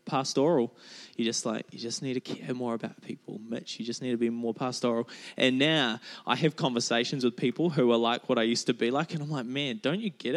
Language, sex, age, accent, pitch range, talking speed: English, male, 20-39, Australian, 115-140 Hz, 250 wpm